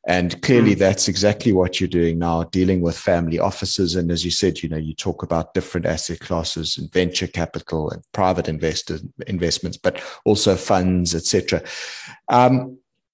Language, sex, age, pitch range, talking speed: English, male, 30-49, 85-105 Hz, 165 wpm